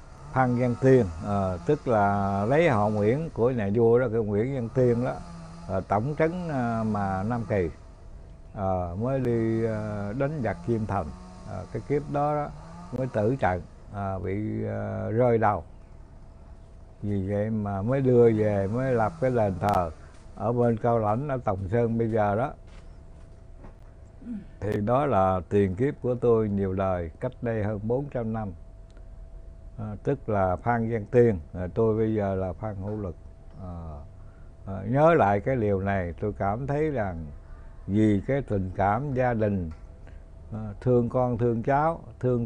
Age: 60-79